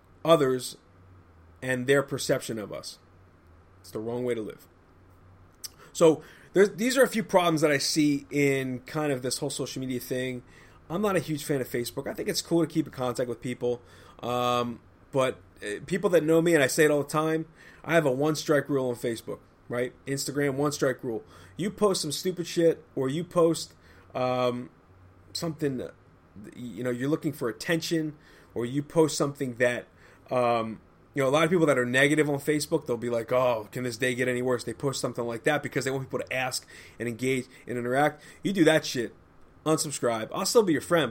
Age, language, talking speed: 30-49, English, 205 wpm